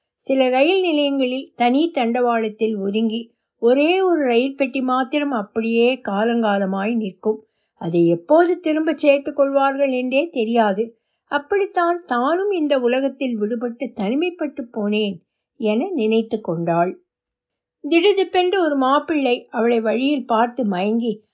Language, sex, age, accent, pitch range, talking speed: Tamil, female, 60-79, native, 220-285 Hz, 105 wpm